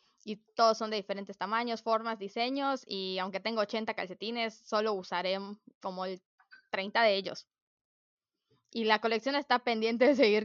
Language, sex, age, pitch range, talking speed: Spanish, female, 10-29, 200-240 Hz, 155 wpm